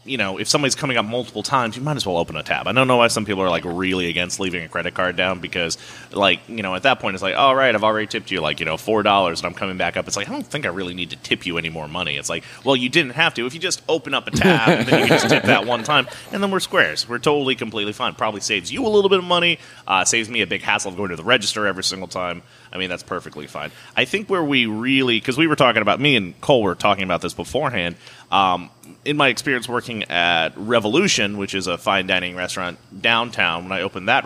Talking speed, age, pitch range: 285 wpm, 30-49, 90-125 Hz